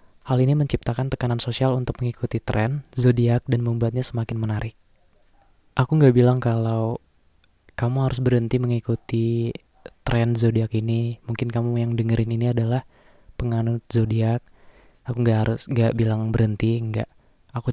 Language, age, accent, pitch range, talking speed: Indonesian, 20-39, native, 115-125 Hz, 135 wpm